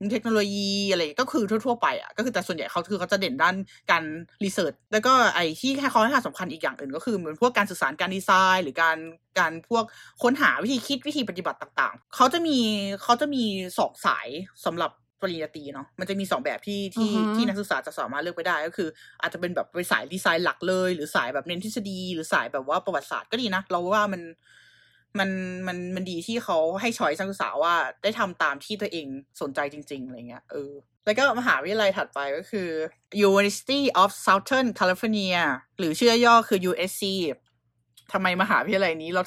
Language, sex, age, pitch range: Thai, female, 20-39, 175-230 Hz